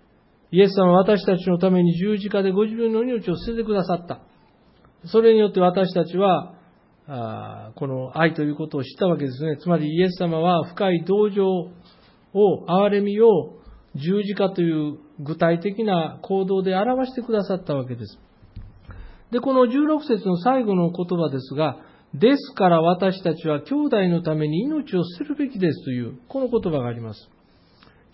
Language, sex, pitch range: Japanese, male, 140-210 Hz